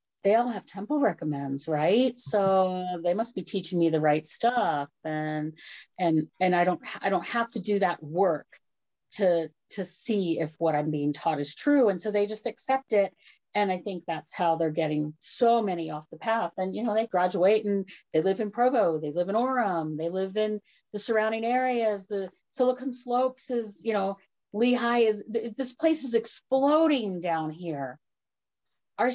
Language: English